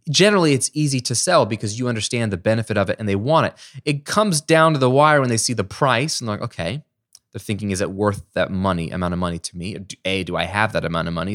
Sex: male